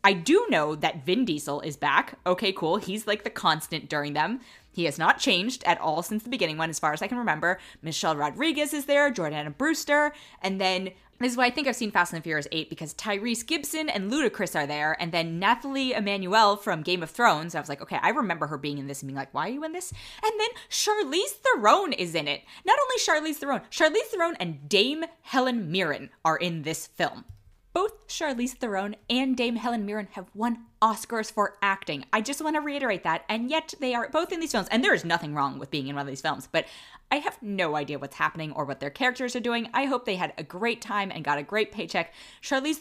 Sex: female